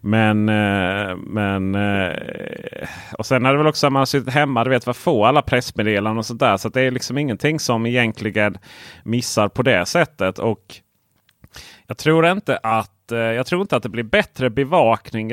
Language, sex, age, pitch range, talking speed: Swedish, male, 30-49, 105-125 Hz, 180 wpm